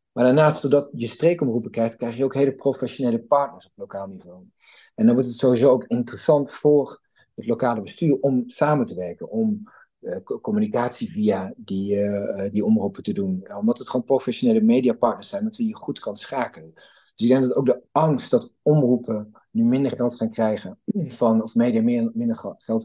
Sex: male